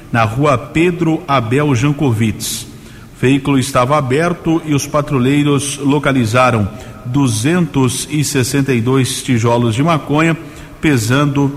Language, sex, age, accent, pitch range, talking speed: Portuguese, male, 50-69, Brazilian, 125-145 Hz, 95 wpm